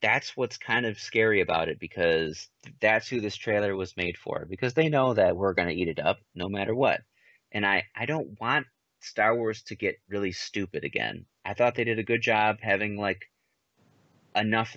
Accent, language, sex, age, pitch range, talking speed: American, English, male, 30-49, 95-115 Hz, 205 wpm